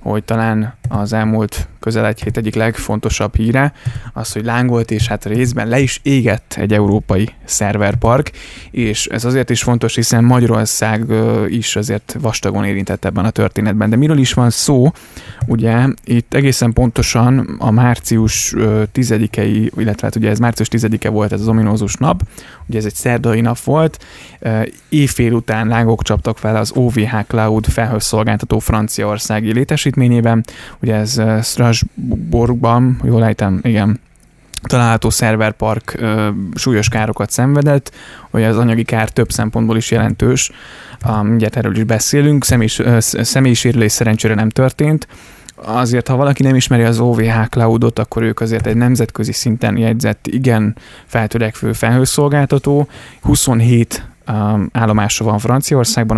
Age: 20-39